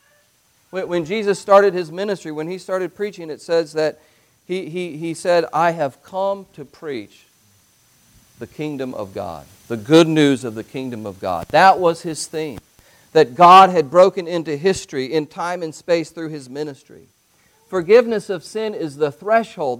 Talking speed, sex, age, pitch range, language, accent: 165 wpm, male, 50-69, 155-205 Hz, English, American